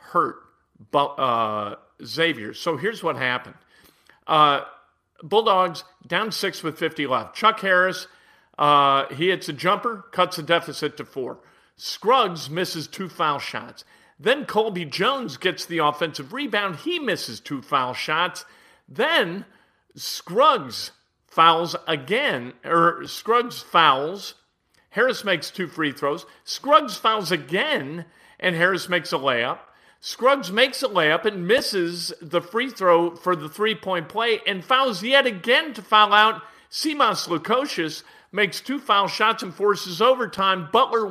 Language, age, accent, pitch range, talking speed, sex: English, 50-69, American, 165-215 Hz, 135 wpm, male